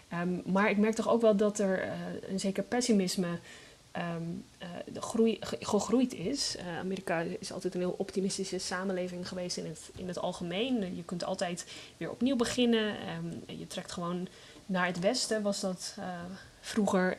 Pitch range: 180-205 Hz